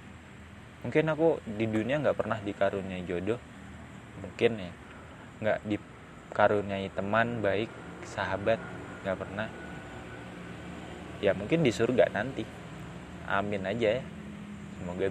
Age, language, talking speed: 20-39, Indonesian, 105 wpm